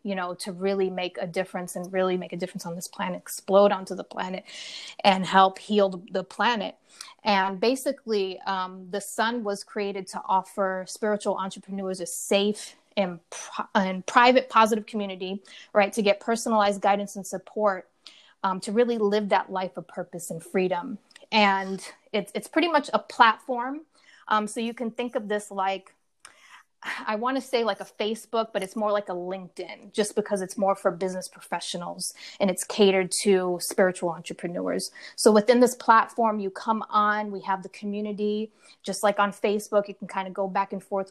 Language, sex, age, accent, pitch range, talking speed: English, female, 30-49, American, 190-215 Hz, 180 wpm